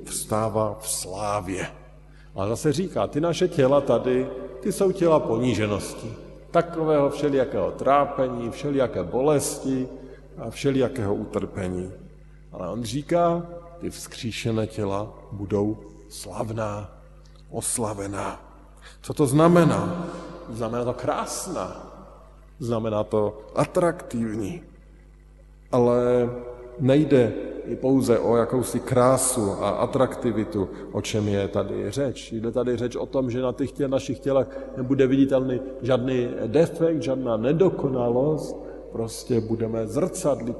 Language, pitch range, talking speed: Slovak, 110-150 Hz, 110 wpm